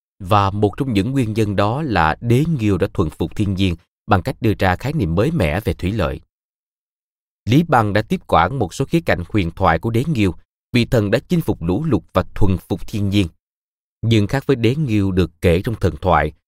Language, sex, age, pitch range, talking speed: Vietnamese, male, 20-39, 85-115 Hz, 225 wpm